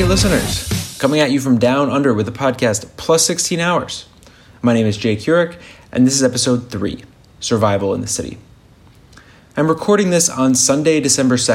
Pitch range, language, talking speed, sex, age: 105-135 Hz, English, 175 wpm, male, 20-39